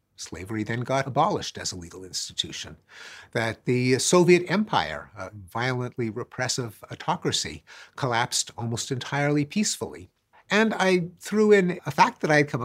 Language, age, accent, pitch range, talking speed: English, 50-69, American, 120-175 Hz, 140 wpm